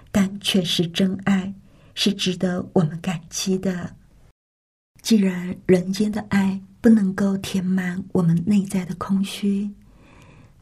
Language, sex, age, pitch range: Chinese, female, 50-69, 175-200 Hz